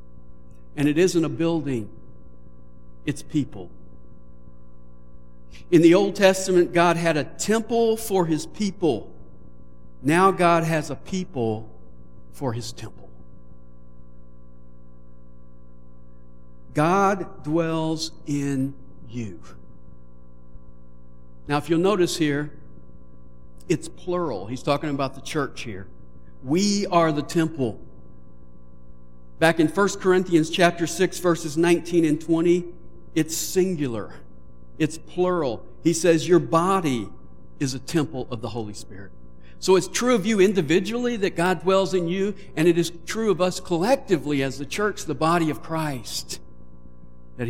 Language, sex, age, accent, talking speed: English, male, 60-79, American, 125 wpm